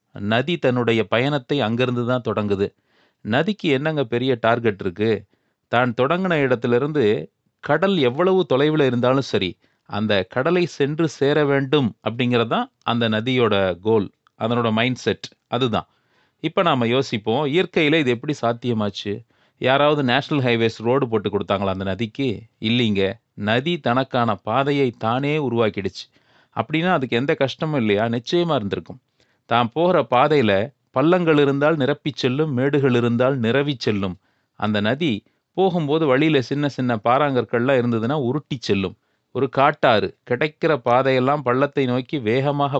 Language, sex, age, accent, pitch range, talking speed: Tamil, male, 30-49, native, 115-145 Hz, 120 wpm